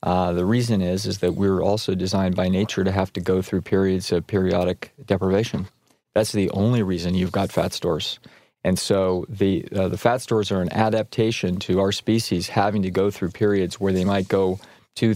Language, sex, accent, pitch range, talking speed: English, male, American, 95-105 Hz, 200 wpm